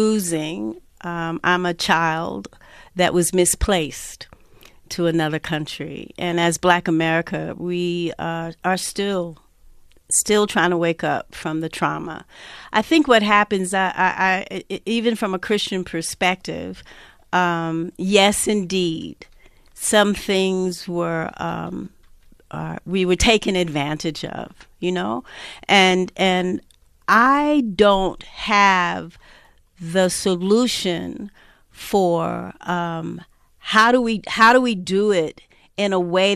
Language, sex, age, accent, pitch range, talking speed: English, female, 50-69, American, 170-200 Hz, 115 wpm